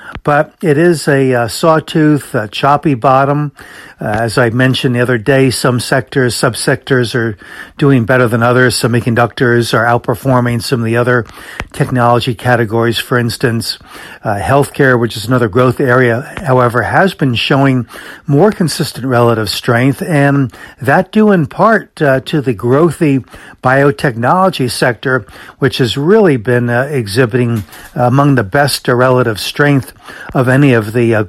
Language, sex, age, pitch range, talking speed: English, male, 60-79, 120-140 Hz, 150 wpm